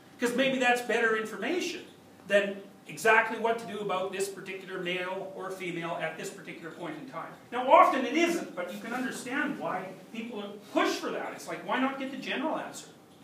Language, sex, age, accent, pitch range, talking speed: English, male, 40-59, American, 195-280 Hz, 195 wpm